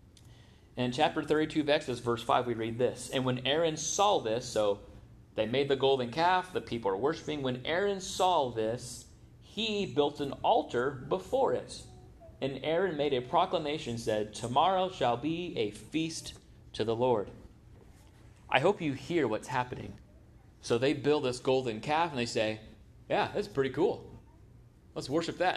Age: 30-49